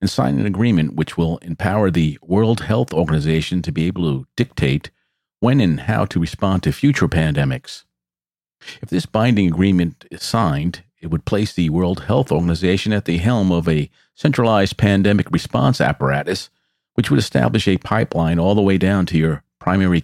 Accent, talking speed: American, 175 wpm